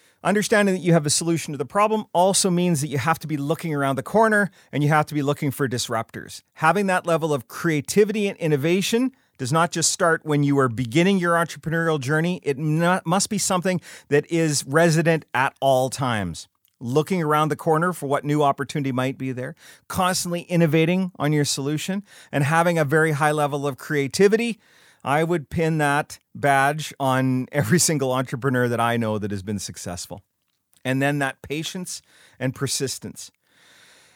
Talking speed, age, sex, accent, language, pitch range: 180 wpm, 40-59, male, American, English, 130-170 Hz